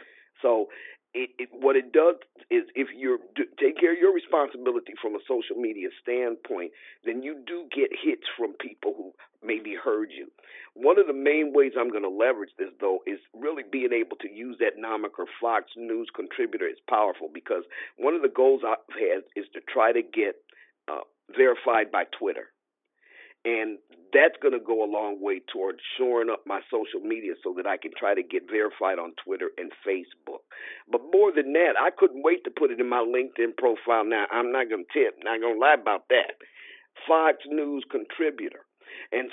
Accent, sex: American, male